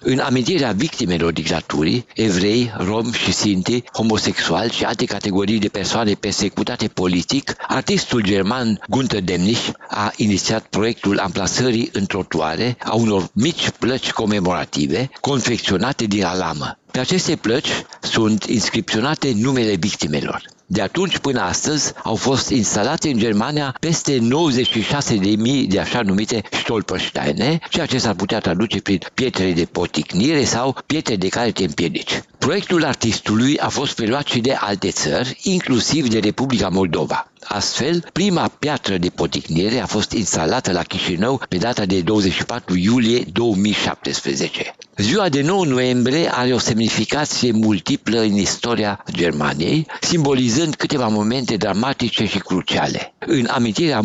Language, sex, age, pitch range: Romanian, male, 60-79, 100-130 Hz